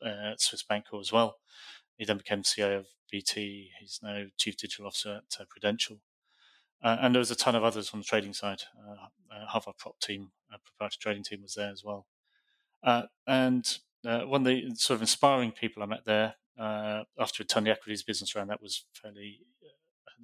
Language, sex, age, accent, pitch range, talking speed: English, male, 30-49, British, 100-110 Hz, 210 wpm